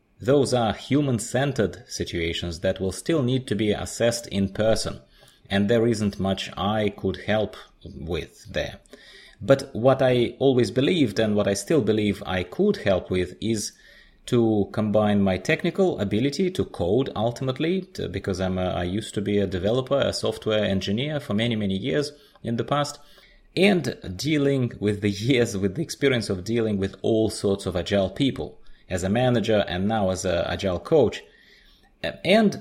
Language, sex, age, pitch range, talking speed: English, male, 30-49, 95-135 Hz, 160 wpm